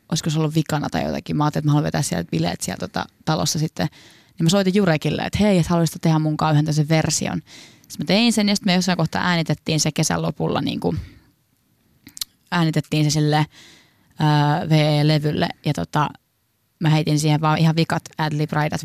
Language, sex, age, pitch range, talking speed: Finnish, female, 20-39, 150-165 Hz, 190 wpm